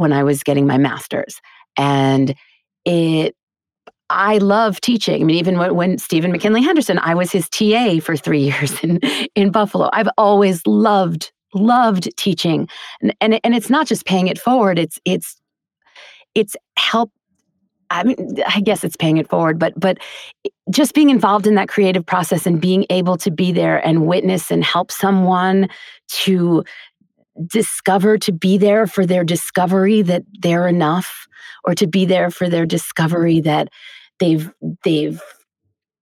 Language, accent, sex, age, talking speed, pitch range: English, American, female, 30-49, 160 wpm, 165-210 Hz